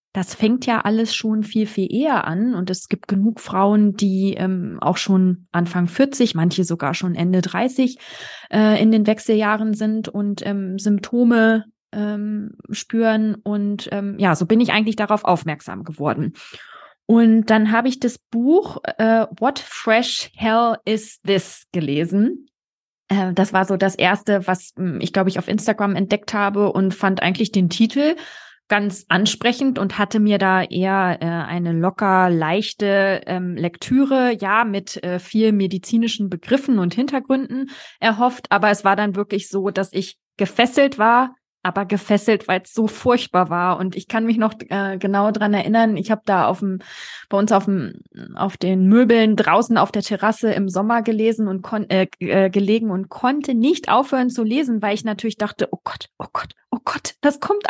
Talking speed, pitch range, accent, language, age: 170 wpm, 190-230 Hz, German, German, 20-39